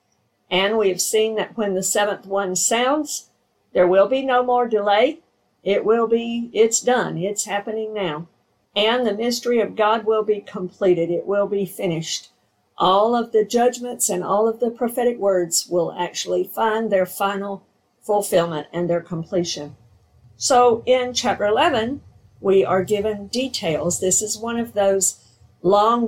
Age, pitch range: 50-69, 180-225 Hz